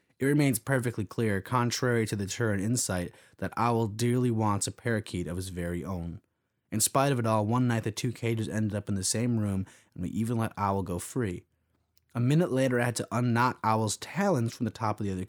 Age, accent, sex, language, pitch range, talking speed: 20-39, American, male, English, 105-125 Hz, 225 wpm